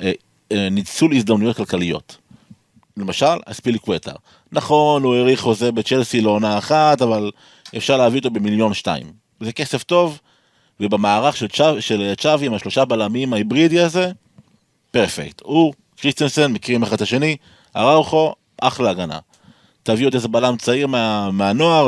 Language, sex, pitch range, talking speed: Hebrew, male, 105-145 Hz, 130 wpm